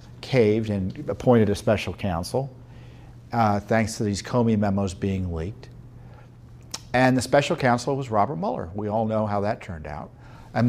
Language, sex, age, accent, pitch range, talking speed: English, male, 50-69, American, 105-135 Hz, 165 wpm